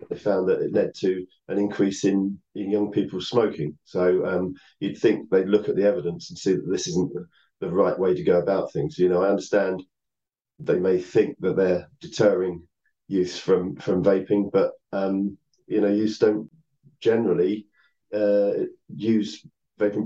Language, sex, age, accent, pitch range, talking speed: English, male, 40-59, British, 90-115 Hz, 175 wpm